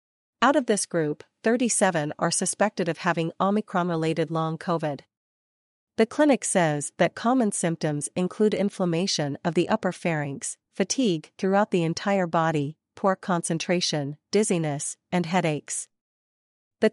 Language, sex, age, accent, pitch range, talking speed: English, female, 40-59, American, 160-195 Hz, 125 wpm